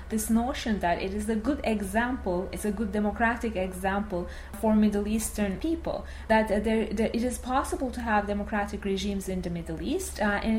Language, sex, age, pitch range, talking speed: English, female, 30-49, 195-240 Hz, 185 wpm